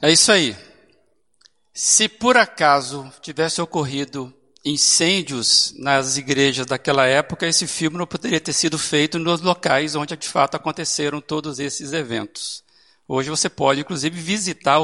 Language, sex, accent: Portuguese, male, Brazilian